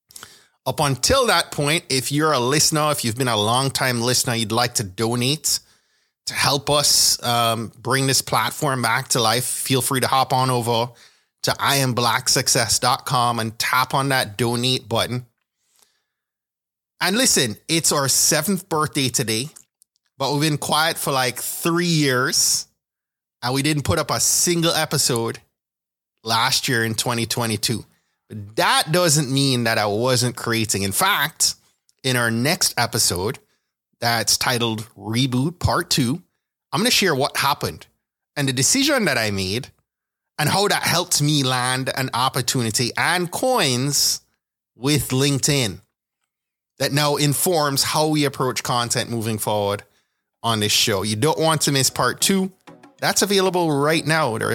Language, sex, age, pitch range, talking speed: English, male, 30-49, 115-145 Hz, 145 wpm